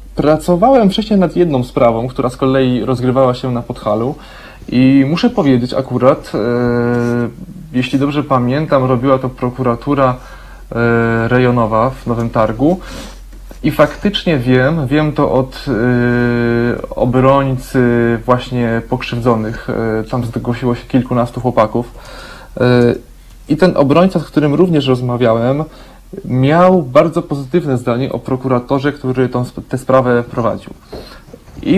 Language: Polish